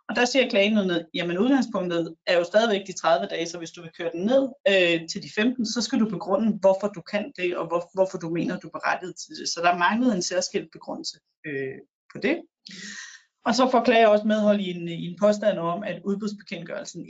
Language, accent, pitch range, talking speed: Danish, native, 175-210 Hz, 220 wpm